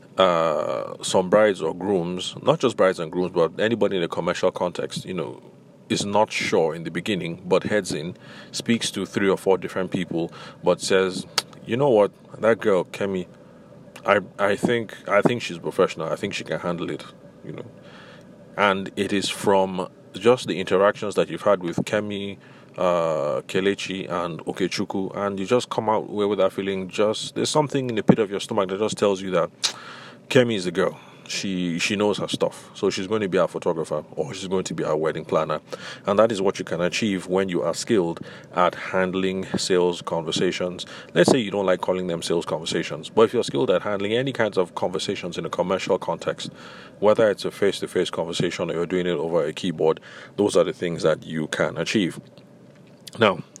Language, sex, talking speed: English, male, 200 wpm